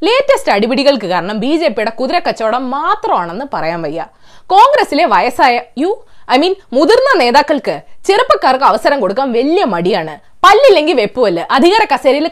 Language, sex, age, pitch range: Malayalam, female, 20-39, 220-365 Hz